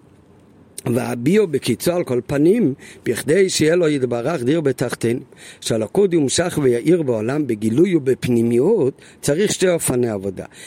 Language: Hebrew